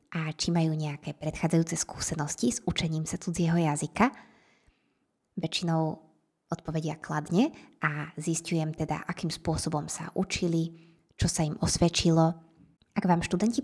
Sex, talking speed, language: female, 125 wpm, Slovak